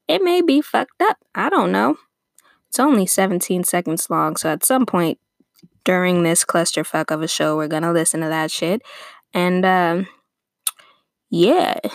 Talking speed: 165 wpm